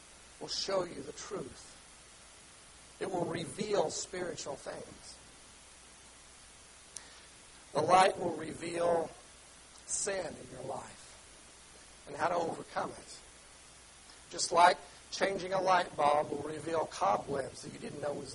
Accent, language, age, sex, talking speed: American, English, 60-79, male, 120 wpm